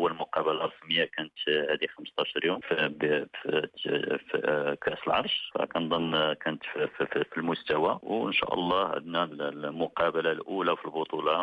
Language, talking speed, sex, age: Arabic, 110 wpm, male, 50-69